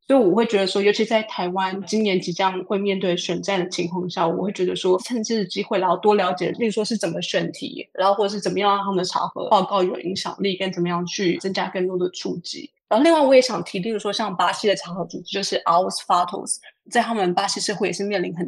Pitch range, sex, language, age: 185-210 Hz, female, Chinese, 20-39